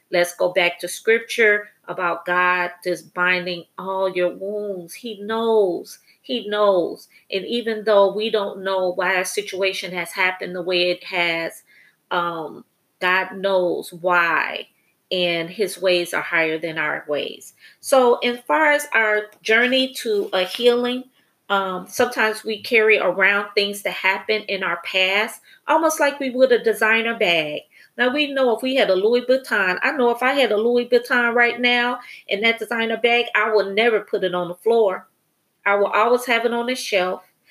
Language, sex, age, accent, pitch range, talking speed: English, female, 30-49, American, 180-235 Hz, 175 wpm